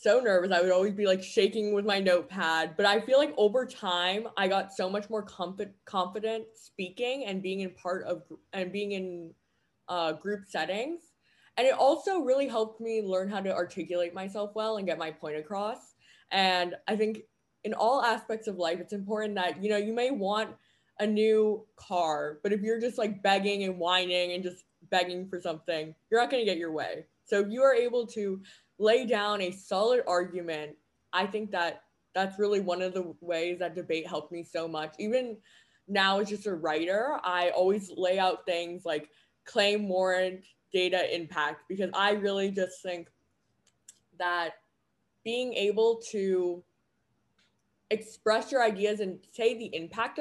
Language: English